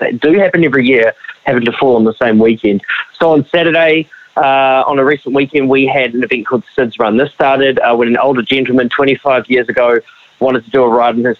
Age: 20-39